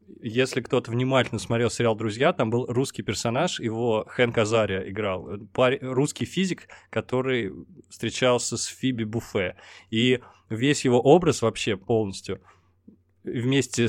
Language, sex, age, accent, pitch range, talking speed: Russian, male, 20-39, native, 110-135 Hz, 120 wpm